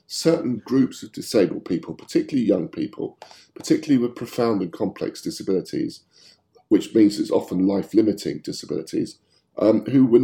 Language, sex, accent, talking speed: English, male, British, 135 wpm